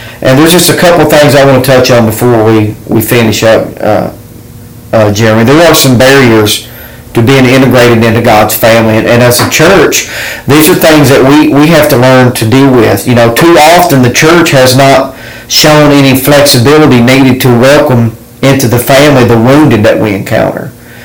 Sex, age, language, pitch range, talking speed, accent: male, 40-59, English, 120-145 Hz, 195 wpm, American